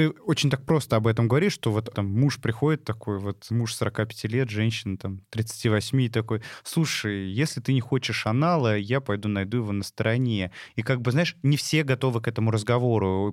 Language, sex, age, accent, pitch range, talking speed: Russian, male, 20-39, native, 105-125 Hz, 195 wpm